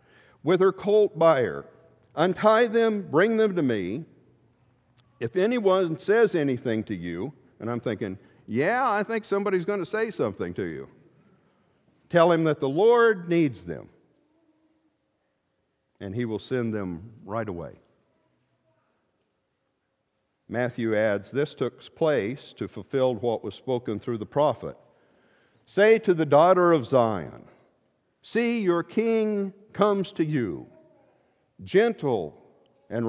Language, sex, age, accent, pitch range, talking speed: English, male, 50-69, American, 120-195 Hz, 130 wpm